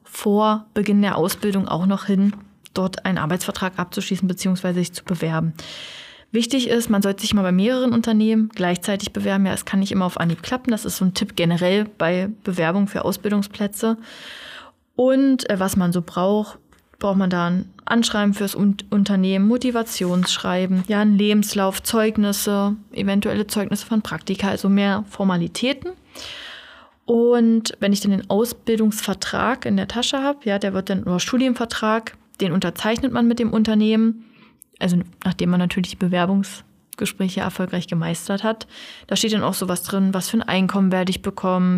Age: 20-39